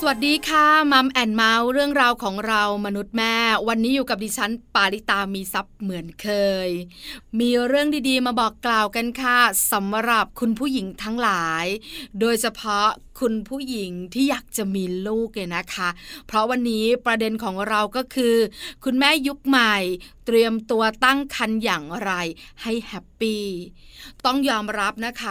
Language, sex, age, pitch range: Thai, female, 20-39, 200-240 Hz